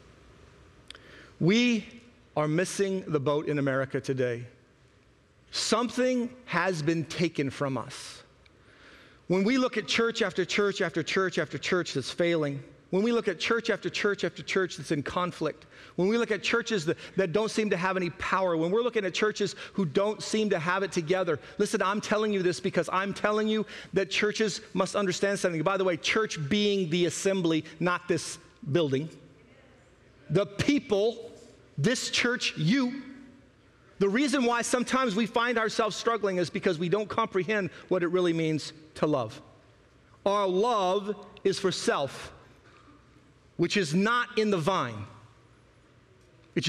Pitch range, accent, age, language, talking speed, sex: 150-210 Hz, American, 40-59, English, 160 wpm, male